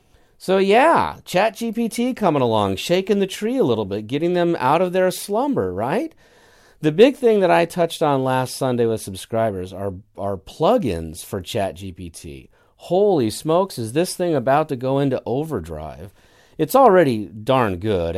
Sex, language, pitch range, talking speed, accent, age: male, English, 95-135 Hz, 160 wpm, American, 40-59